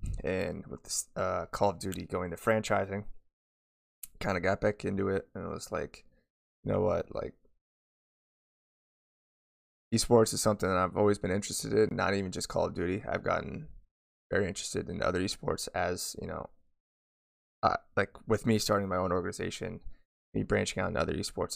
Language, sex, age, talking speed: English, male, 20-39, 175 wpm